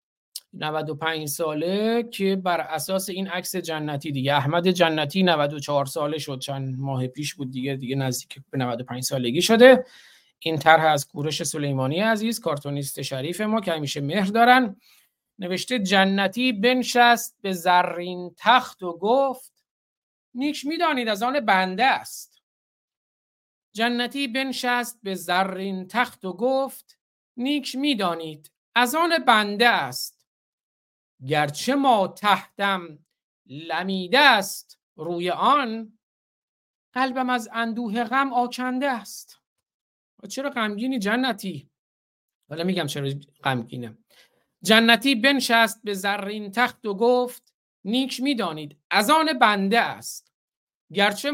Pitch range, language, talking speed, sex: 155-245 Hz, Persian, 115 wpm, male